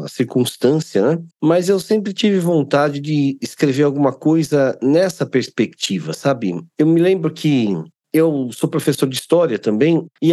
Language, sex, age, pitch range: Portuguese, male, 50-69, 135-170 Hz